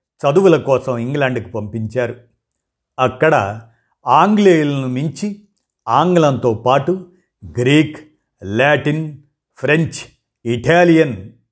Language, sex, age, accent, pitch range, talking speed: Telugu, male, 50-69, native, 120-160 Hz, 70 wpm